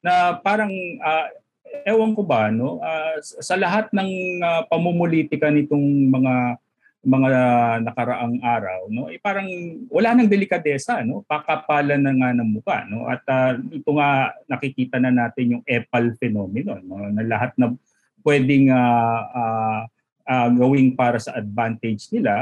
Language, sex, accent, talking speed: Filipino, male, native, 155 wpm